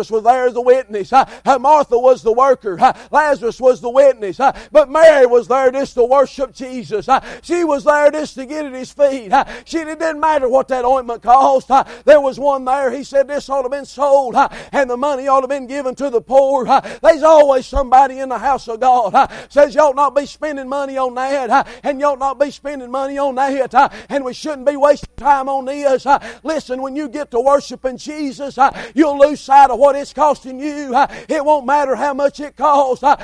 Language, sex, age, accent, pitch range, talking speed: English, male, 50-69, American, 195-280 Hz, 210 wpm